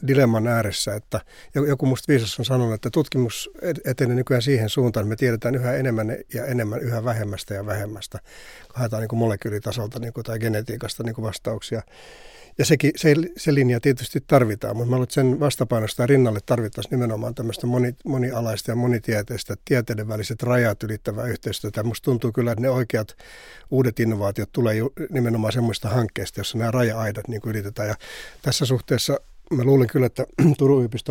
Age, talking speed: 60-79, 160 wpm